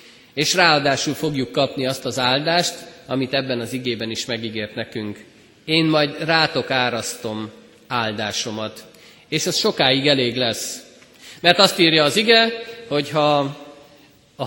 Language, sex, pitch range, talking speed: Hungarian, male, 120-170 Hz, 130 wpm